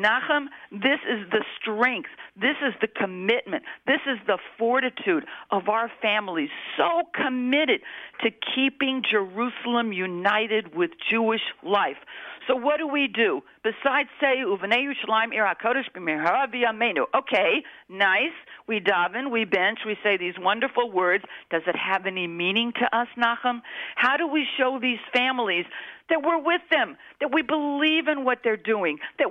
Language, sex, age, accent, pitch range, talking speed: English, female, 50-69, American, 200-270 Hz, 140 wpm